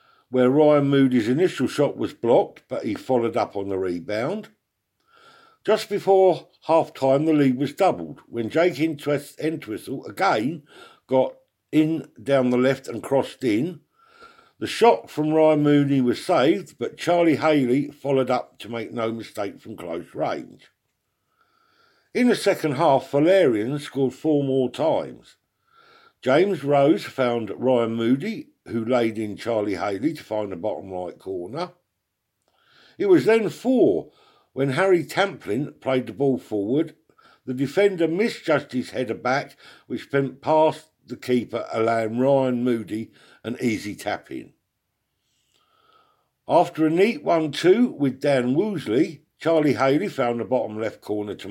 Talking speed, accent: 140 wpm, British